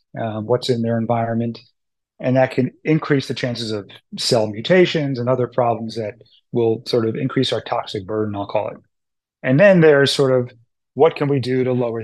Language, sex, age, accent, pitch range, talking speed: English, male, 30-49, American, 115-140 Hz, 195 wpm